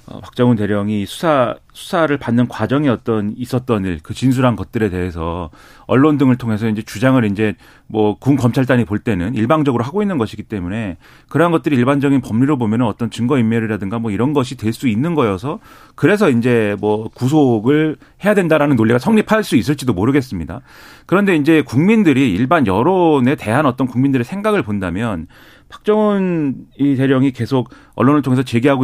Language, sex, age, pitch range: Korean, male, 40-59, 110-150 Hz